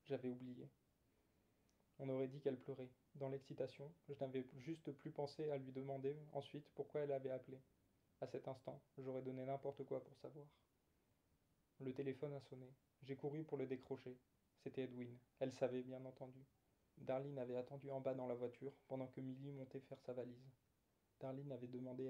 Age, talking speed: 20-39, 175 wpm